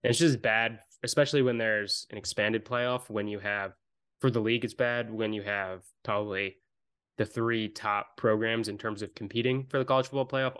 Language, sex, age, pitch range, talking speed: English, male, 20-39, 105-120 Hz, 195 wpm